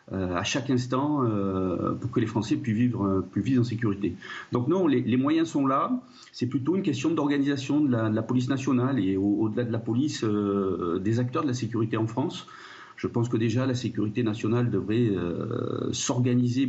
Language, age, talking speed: French, 40-59, 205 wpm